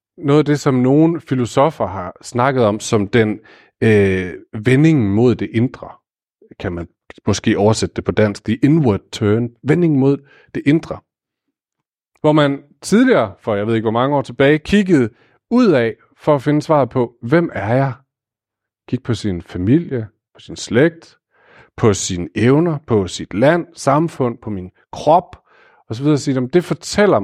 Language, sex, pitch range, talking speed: Danish, male, 110-155 Hz, 160 wpm